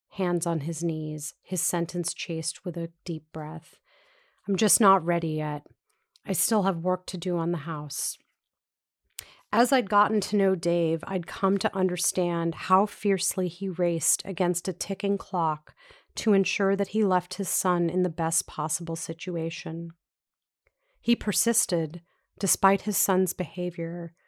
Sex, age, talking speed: female, 40-59, 150 wpm